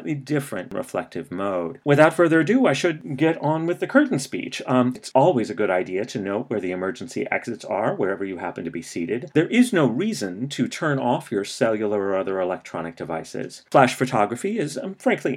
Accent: American